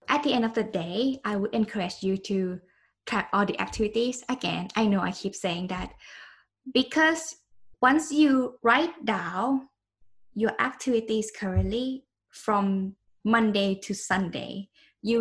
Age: 10-29